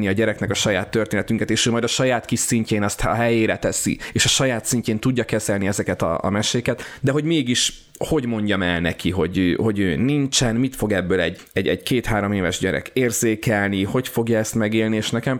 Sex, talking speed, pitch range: male, 205 wpm, 100-115 Hz